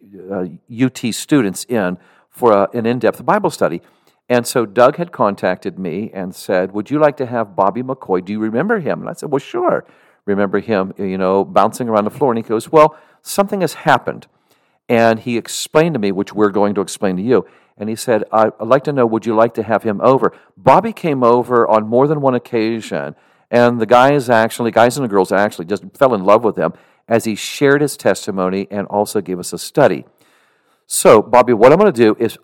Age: 50-69